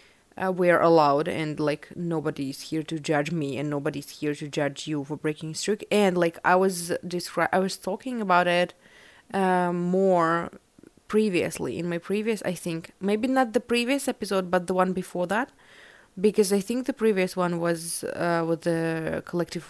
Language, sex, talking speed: English, female, 175 wpm